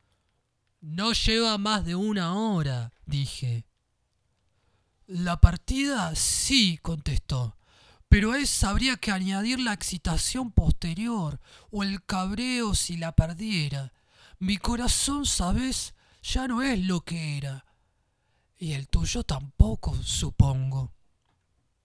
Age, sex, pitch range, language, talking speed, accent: 30-49, male, 135-225 Hz, Spanish, 110 wpm, Argentinian